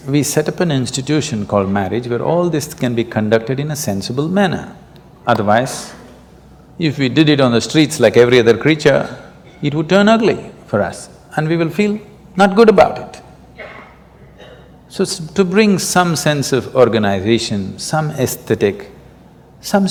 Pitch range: 130-180 Hz